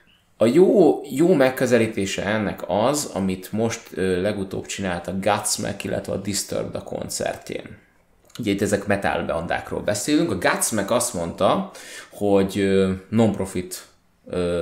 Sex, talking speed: male, 125 wpm